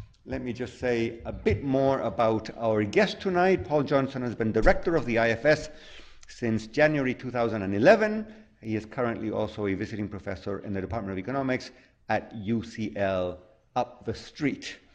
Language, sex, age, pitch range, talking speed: English, male, 50-69, 110-150 Hz, 155 wpm